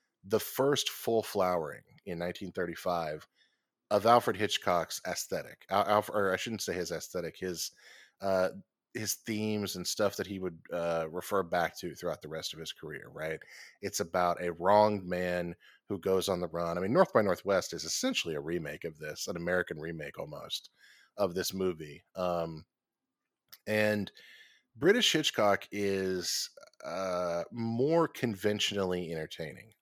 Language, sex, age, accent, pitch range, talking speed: English, male, 30-49, American, 85-105 Hz, 150 wpm